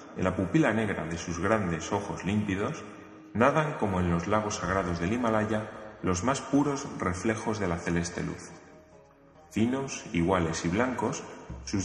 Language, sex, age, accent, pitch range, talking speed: Spanish, male, 30-49, Spanish, 85-110 Hz, 150 wpm